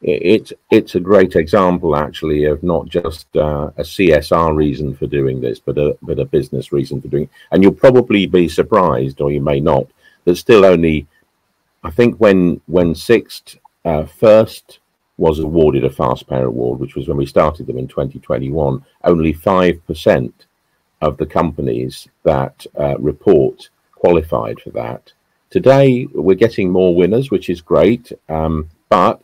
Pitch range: 75-95 Hz